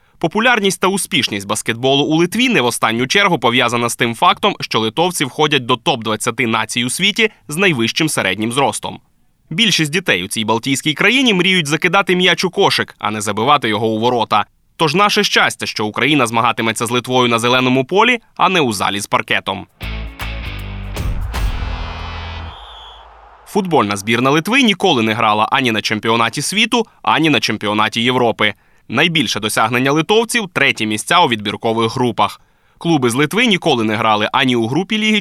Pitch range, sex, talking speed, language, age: 110-165 Hz, male, 160 wpm, Ukrainian, 20-39